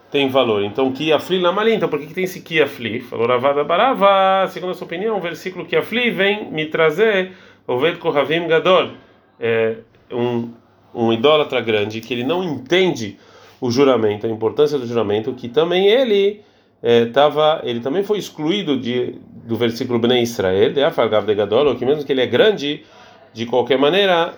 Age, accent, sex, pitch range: 40-59, Brazilian, male, 115-160 Hz